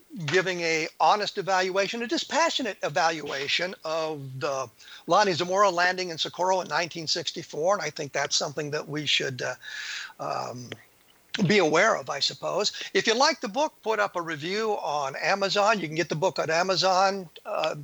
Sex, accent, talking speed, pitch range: male, American, 170 wpm, 160-205 Hz